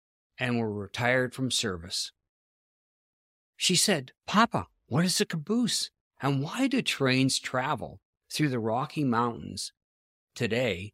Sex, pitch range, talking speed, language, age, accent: male, 110-155 Hz, 120 wpm, English, 50-69, American